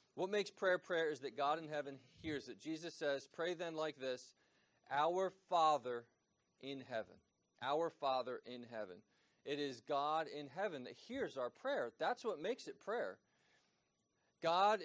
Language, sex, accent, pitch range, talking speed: English, male, American, 130-170 Hz, 160 wpm